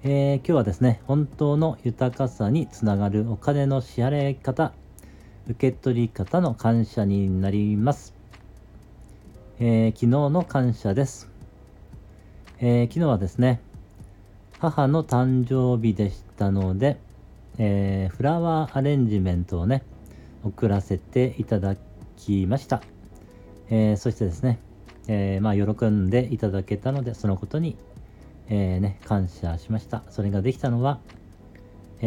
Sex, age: male, 40-59